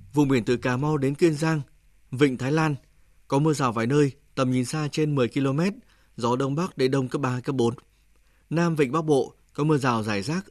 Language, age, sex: Vietnamese, 20-39, male